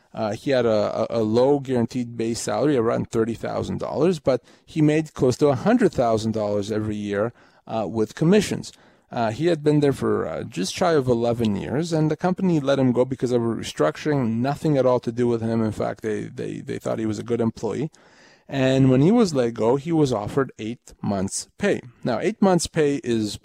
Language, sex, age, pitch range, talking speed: English, male, 30-49, 115-155 Hz, 200 wpm